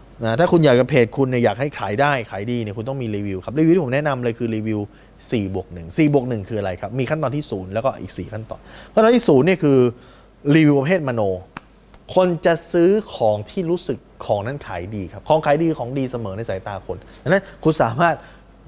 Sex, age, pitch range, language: male, 20-39, 115-155 Hz, Thai